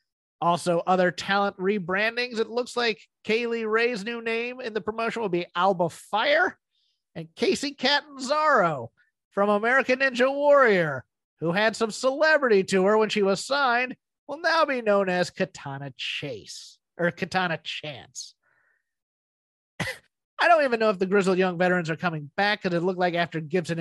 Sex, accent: male, American